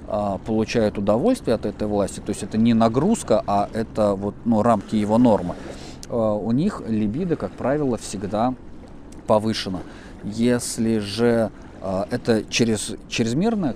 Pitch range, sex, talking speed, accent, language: 100-125 Hz, male, 120 wpm, native, Russian